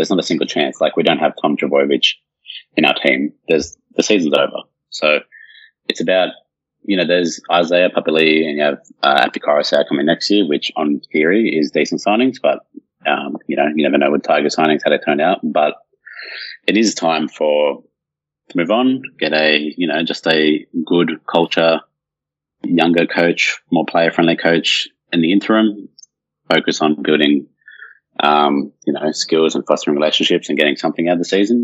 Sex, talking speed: male, 180 wpm